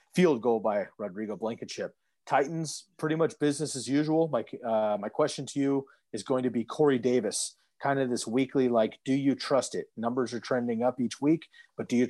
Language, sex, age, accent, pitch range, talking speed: English, male, 30-49, American, 115-135 Hz, 200 wpm